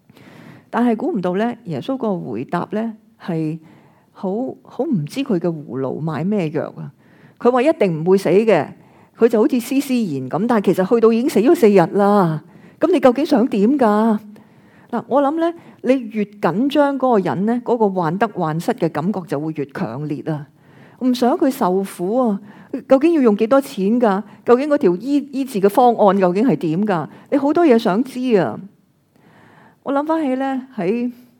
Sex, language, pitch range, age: female, Chinese, 165-235 Hz, 40-59